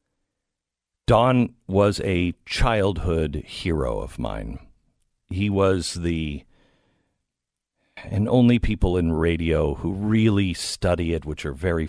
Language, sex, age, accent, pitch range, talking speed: English, male, 50-69, American, 75-110 Hz, 110 wpm